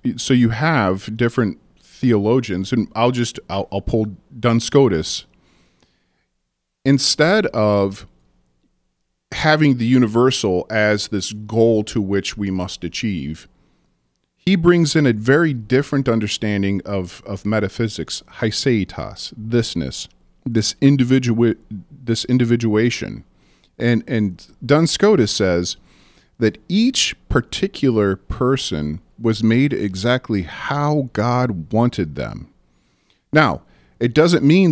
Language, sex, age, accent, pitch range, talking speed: English, male, 40-59, American, 90-130 Hz, 105 wpm